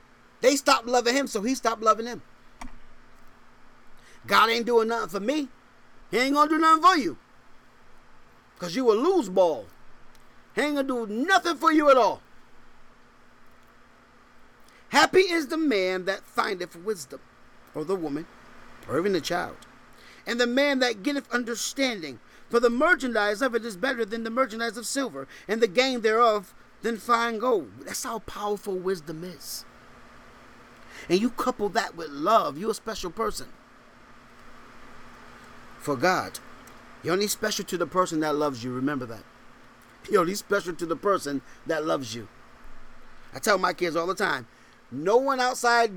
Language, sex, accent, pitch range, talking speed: English, male, American, 185-260 Hz, 160 wpm